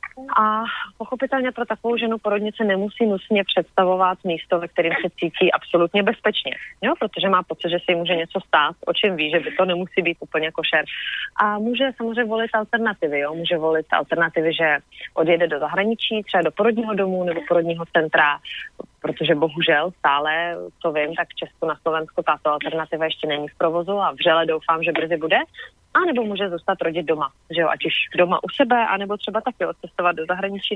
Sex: female